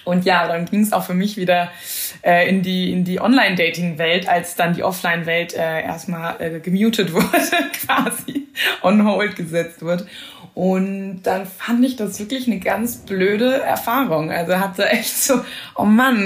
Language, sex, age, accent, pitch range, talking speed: German, female, 20-39, German, 170-215 Hz, 165 wpm